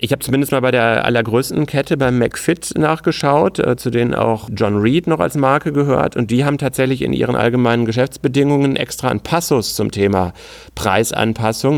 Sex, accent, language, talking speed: male, German, German, 175 wpm